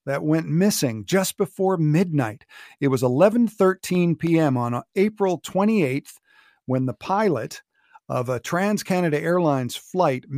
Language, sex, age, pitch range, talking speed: English, male, 50-69, 135-180 Hz, 125 wpm